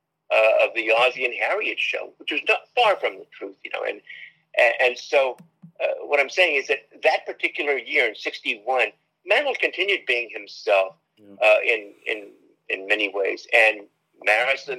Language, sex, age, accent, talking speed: English, male, 50-69, American, 175 wpm